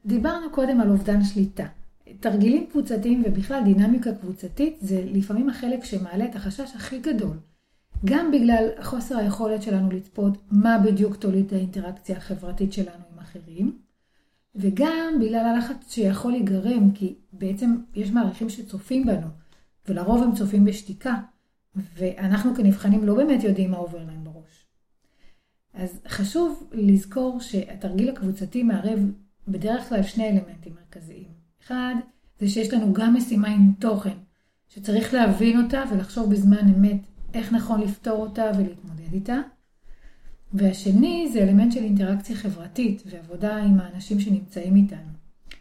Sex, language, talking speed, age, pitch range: female, Hebrew, 130 wpm, 40-59, 195-235 Hz